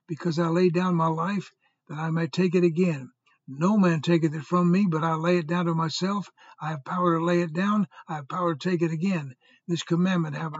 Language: English